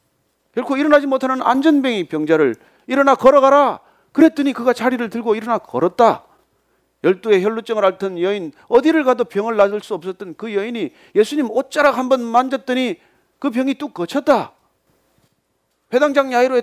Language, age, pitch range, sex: Korean, 40-59, 215-290 Hz, male